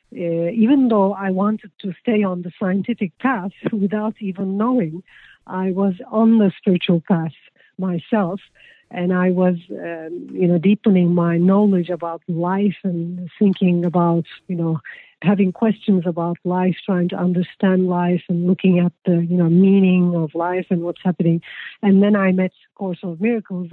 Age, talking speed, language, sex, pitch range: 50-69, 160 wpm, English, female, 180-210 Hz